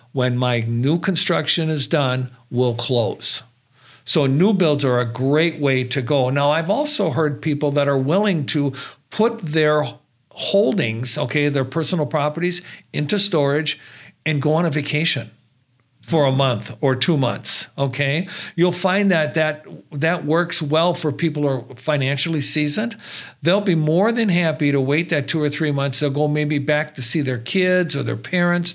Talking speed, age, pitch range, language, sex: 175 wpm, 50-69, 135-170 Hz, English, male